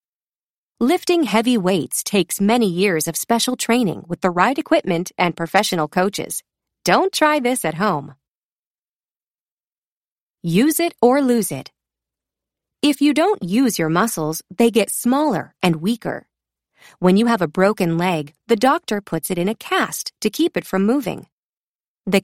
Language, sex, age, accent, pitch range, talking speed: English, female, 30-49, American, 170-255 Hz, 150 wpm